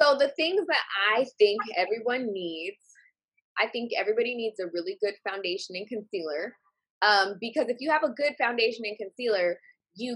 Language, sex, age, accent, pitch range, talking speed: English, female, 20-39, American, 190-260 Hz, 170 wpm